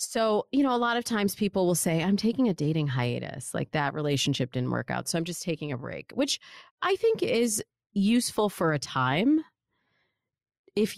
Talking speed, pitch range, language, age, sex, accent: 195 wpm, 145-210 Hz, English, 30-49, female, American